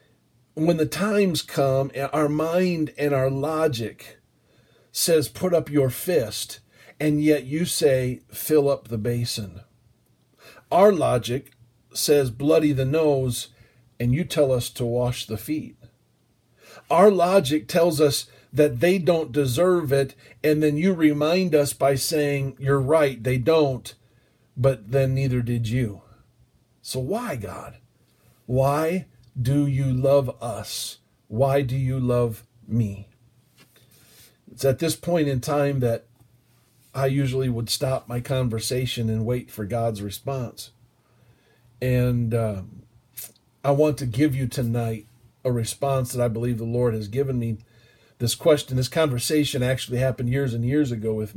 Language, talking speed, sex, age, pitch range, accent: English, 140 wpm, male, 50-69, 120-145 Hz, American